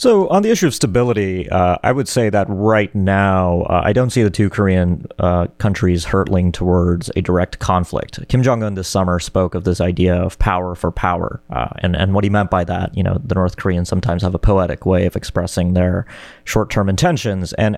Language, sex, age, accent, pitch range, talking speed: English, male, 30-49, American, 90-105 Hz, 215 wpm